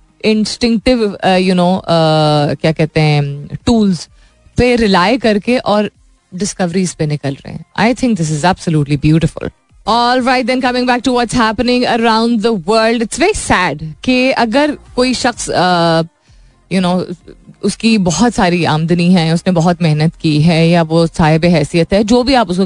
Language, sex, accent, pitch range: Hindi, female, native, 170-225 Hz